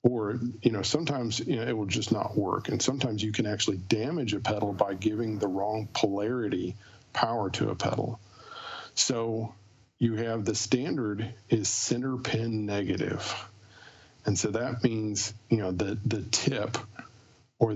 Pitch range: 105-120 Hz